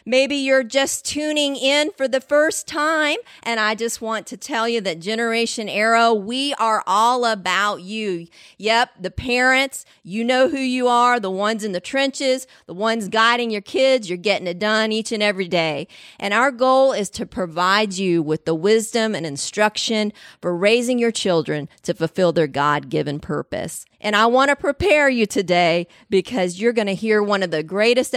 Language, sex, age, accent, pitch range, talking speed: English, female, 40-59, American, 185-235 Hz, 185 wpm